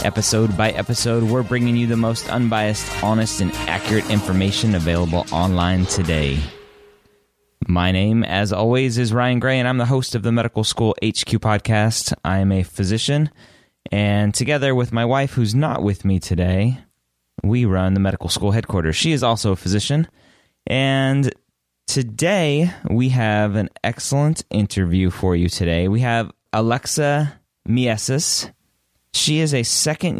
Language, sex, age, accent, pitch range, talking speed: English, male, 20-39, American, 95-125 Hz, 150 wpm